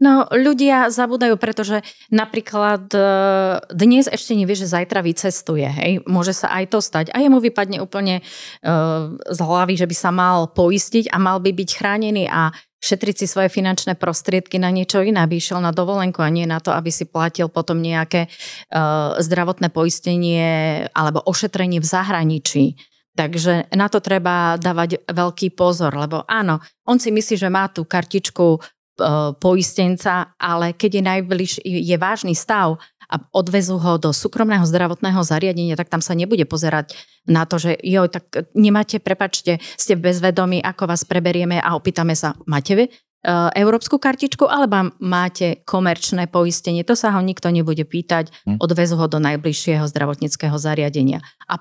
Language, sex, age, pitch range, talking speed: Slovak, female, 30-49, 165-200 Hz, 155 wpm